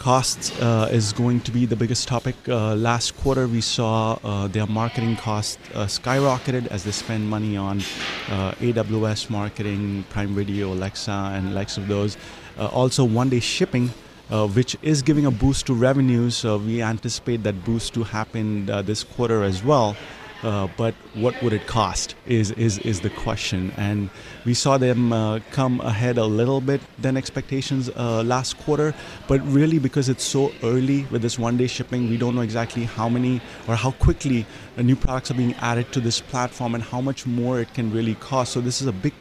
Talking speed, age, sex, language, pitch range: 195 wpm, 30-49, male, English, 110-130 Hz